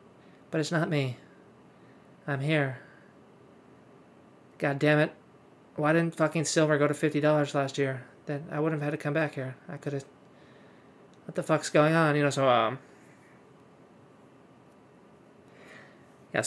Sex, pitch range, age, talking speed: male, 145-200 Hz, 20-39, 145 wpm